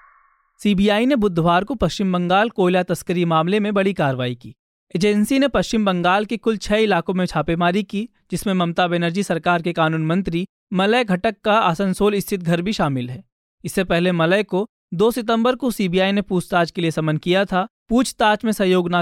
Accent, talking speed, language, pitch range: native, 185 wpm, Hindi, 175-215 Hz